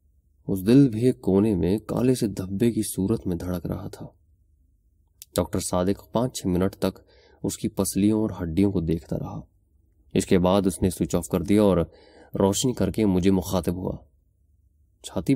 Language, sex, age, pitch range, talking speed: Urdu, male, 30-49, 80-100 Hz, 170 wpm